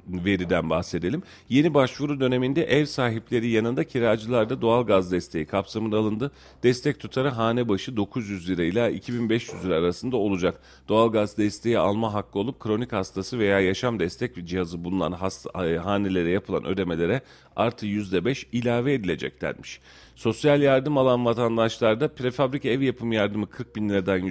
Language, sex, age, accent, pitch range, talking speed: Turkish, male, 40-59, native, 95-125 Hz, 140 wpm